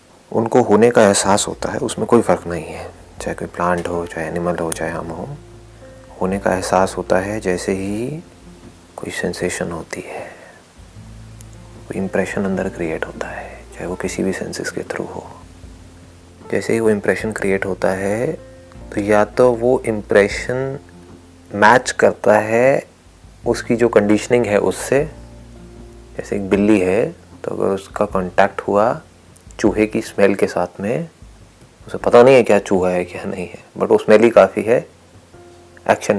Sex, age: male, 30-49